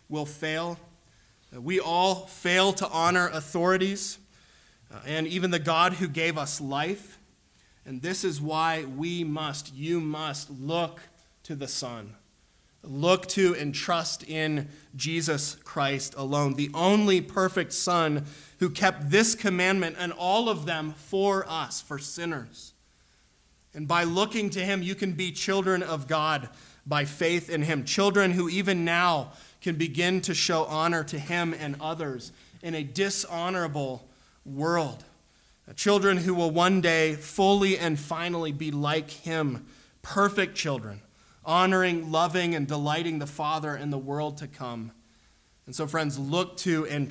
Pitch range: 145-180 Hz